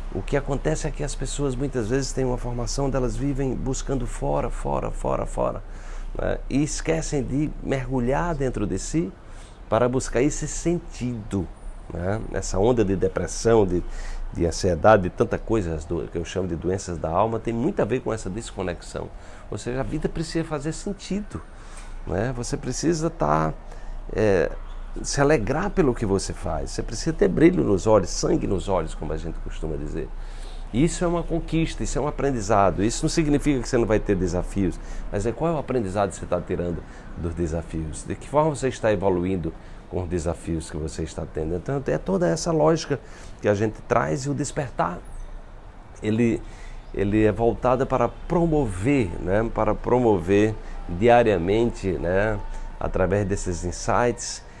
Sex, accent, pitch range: male, Brazilian, 90-140 Hz